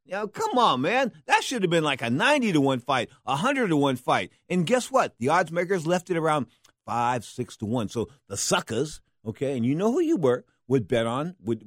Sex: male